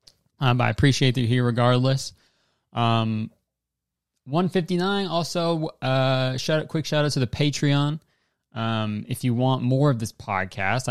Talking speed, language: 155 wpm, English